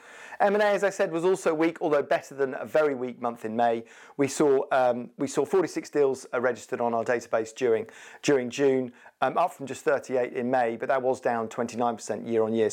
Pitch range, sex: 120-170 Hz, male